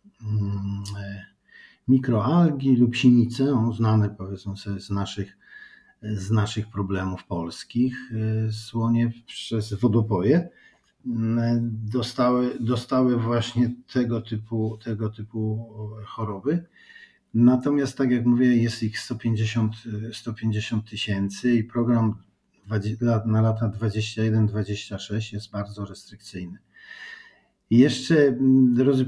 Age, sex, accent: 40-59, male, native